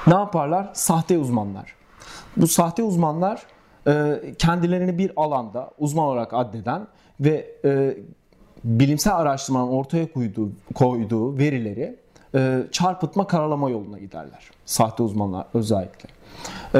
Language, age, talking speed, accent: Turkish, 40-59, 95 wpm, native